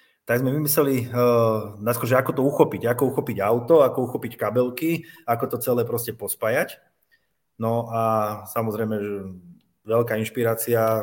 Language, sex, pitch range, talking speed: Slovak, male, 110-130 Hz, 135 wpm